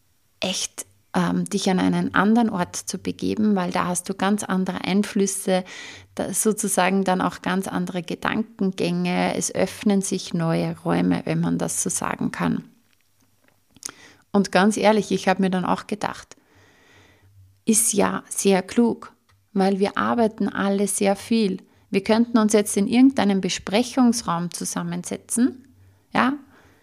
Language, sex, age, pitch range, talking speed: German, female, 30-49, 175-210 Hz, 140 wpm